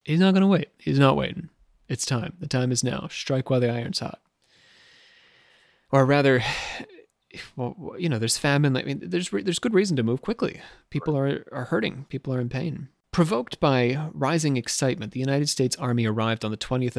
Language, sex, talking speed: English, male, 200 wpm